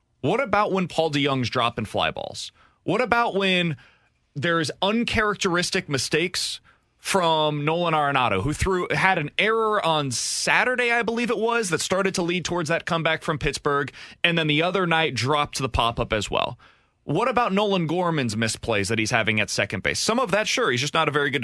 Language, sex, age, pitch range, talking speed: English, male, 30-49, 140-195 Hz, 200 wpm